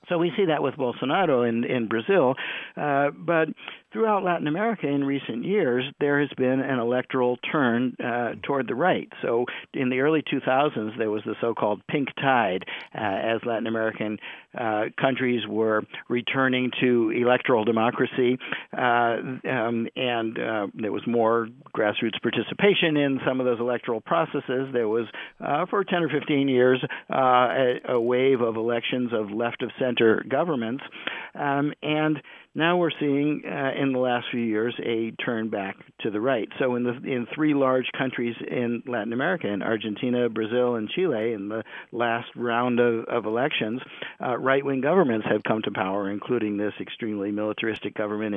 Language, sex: English, male